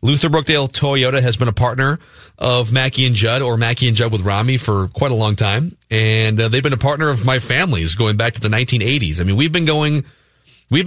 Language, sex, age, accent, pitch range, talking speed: English, male, 30-49, American, 105-140 Hz, 230 wpm